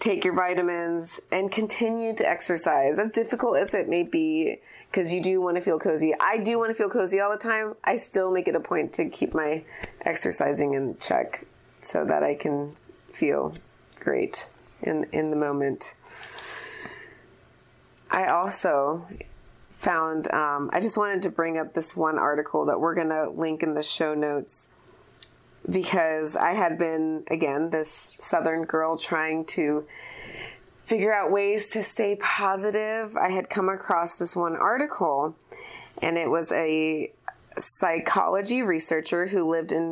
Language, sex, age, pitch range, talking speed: English, female, 30-49, 155-200 Hz, 160 wpm